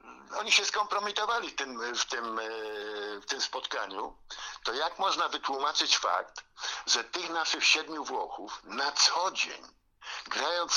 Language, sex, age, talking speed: Polish, male, 60-79, 115 wpm